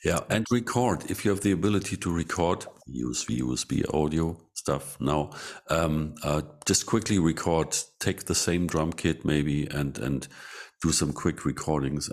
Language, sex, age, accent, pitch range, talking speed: English, male, 50-69, German, 70-80 Hz, 165 wpm